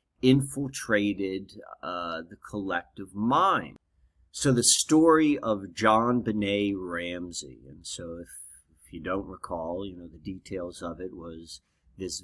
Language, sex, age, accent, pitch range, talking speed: English, male, 30-49, American, 80-100 Hz, 130 wpm